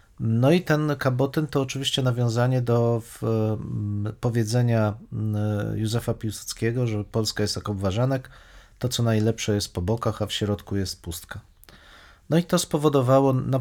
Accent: native